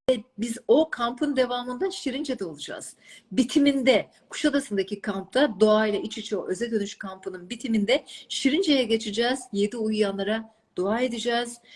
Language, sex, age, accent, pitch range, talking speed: Turkish, female, 40-59, native, 200-265 Hz, 120 wpm